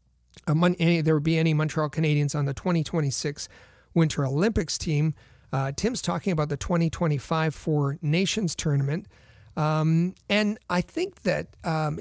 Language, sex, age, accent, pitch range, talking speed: English, male, 40-59, American, 145-175 Hz, 145 wpm